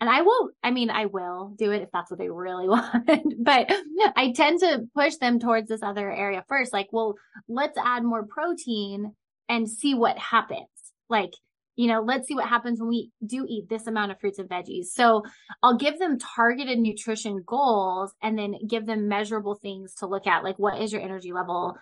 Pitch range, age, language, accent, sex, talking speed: 200-240 Hz, 20-39, English, American, female, 205 wpm